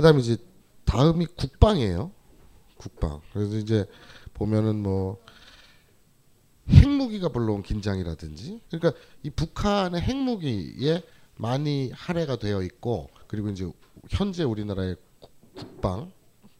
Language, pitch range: Korean, 100-165 Hz